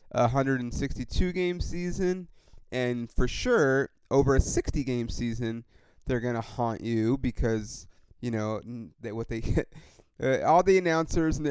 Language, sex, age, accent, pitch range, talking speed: English, male, 30-49, American, 115-165 Hz, 145 wpm